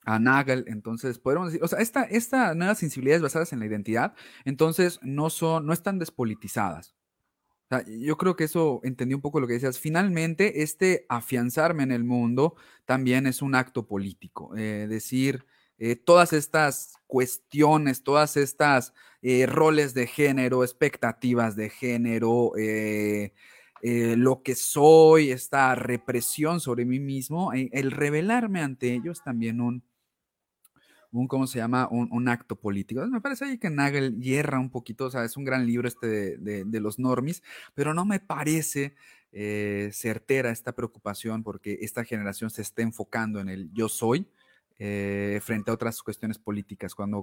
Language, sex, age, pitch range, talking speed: Spanish, male, 30-49, 110-145 Hz, 165 wpm